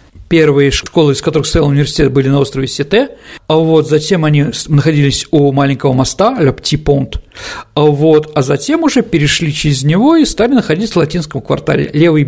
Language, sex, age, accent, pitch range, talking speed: Russian, male, 50-69, native, 145-185 Hz, 160 wpm